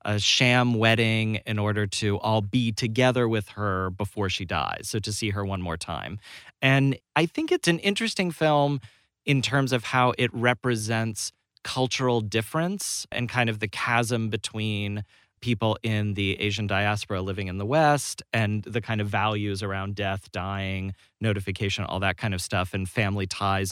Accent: American